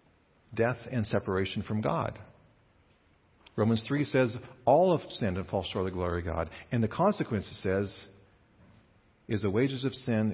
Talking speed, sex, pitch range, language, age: 170 wpm, male, 100-150 Hz, English, 50-69